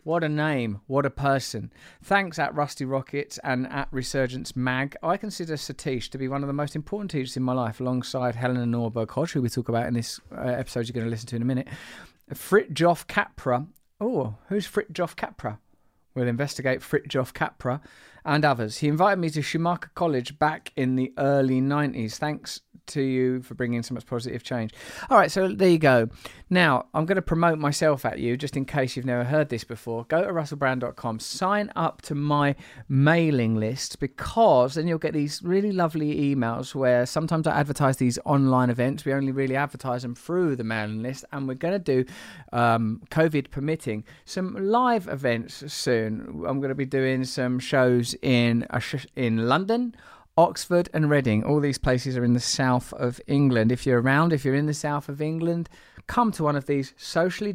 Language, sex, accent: English, male, British